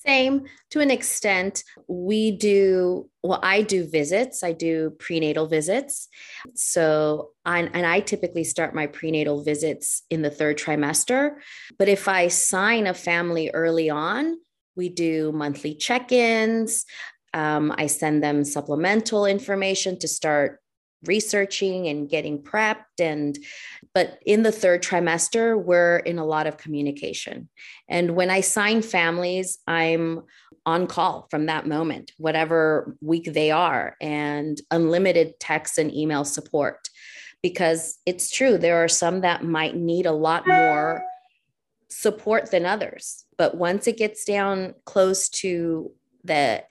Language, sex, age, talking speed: English, female, 30-49, 135 wpm